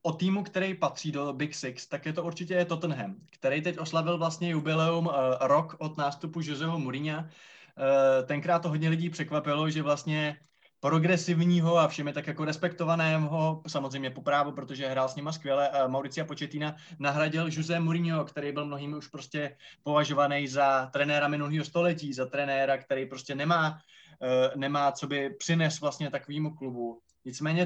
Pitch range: 140-165 Hz